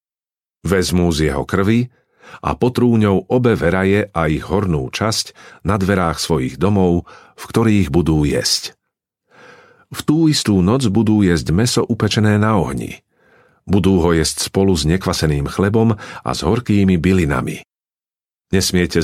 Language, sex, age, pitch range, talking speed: Slovak, male, 50-69, 85-110 Hz, 130 wpm